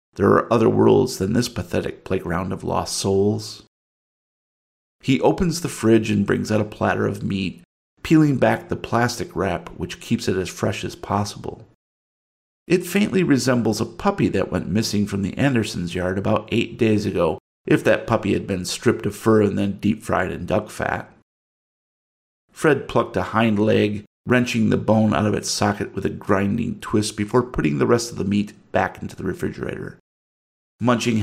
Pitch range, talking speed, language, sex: 100-115 Hz, 175 wpm, English, male